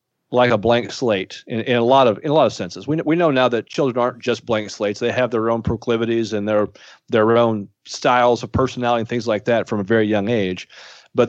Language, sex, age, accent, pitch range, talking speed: English, male, 40-59, American, 110-125 Hz, 245 wpm